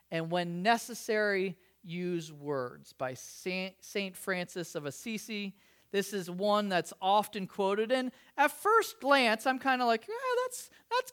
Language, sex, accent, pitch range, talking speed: English, male, American, 175-270 Hz, 145 wpm